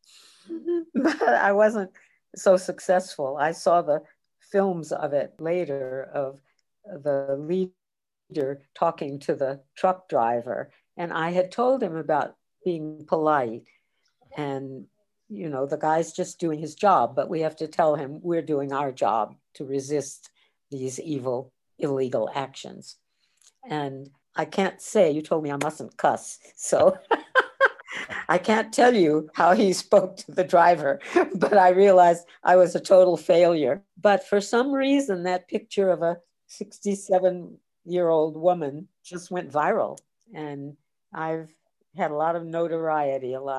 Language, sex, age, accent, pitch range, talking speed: English, female, 60-79, American, 140-185 Hz, 140 wpm